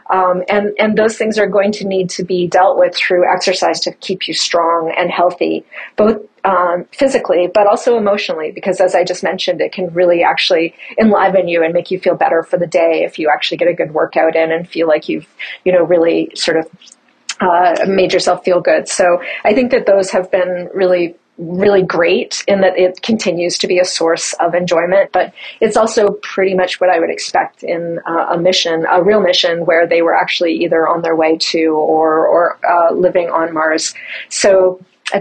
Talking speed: 205 wpm